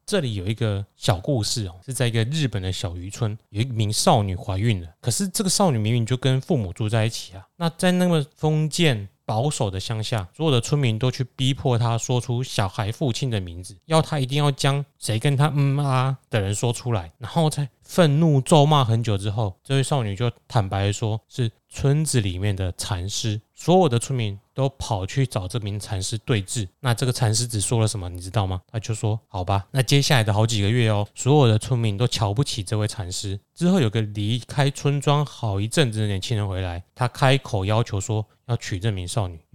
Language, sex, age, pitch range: Chinese, male, 20-39, 105-130 Hz